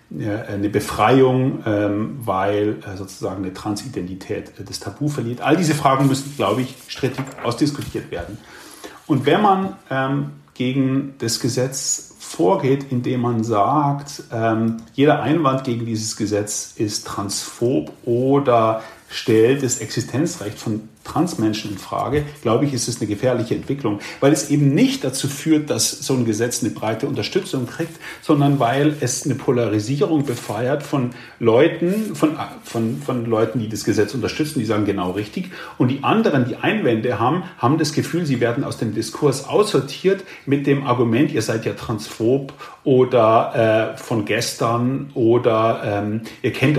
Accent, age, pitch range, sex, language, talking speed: German, 40-59, 110-140 Hz, male, German, 145 wpm